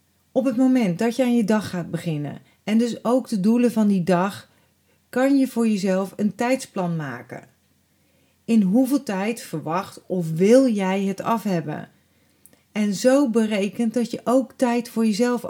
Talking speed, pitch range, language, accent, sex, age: 165 wpm, 180-230 Hz, Dutch, Dutch, female, 40-59